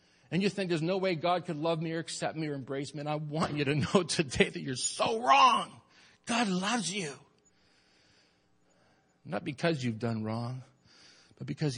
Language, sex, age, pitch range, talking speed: English, male, 50-69, 105-165 Hz, 190 wpm